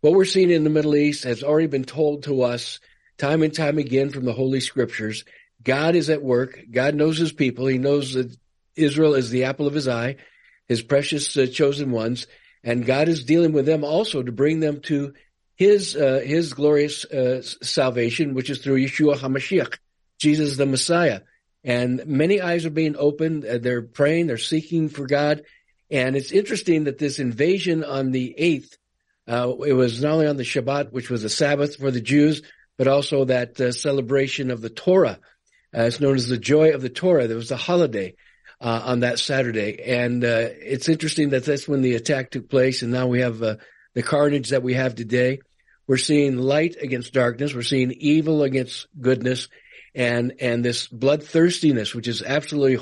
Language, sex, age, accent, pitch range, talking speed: English, male, 50-69, American, 125-150 Hz, 190 wpm